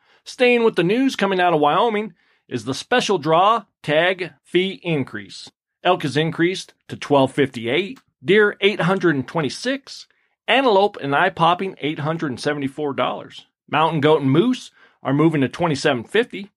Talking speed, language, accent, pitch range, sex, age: 130 wpm, English, American, 145-200 Hz, male, 40-59